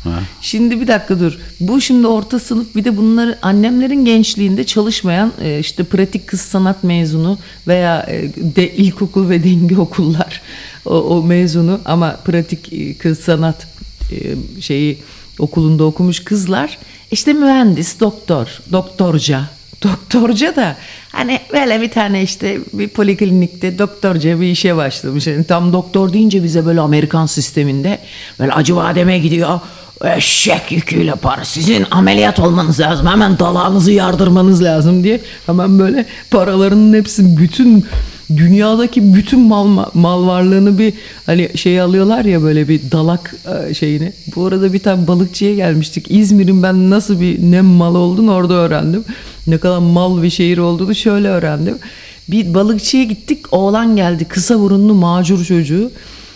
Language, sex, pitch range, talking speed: English, female, 170-205 Hz, 135 wpm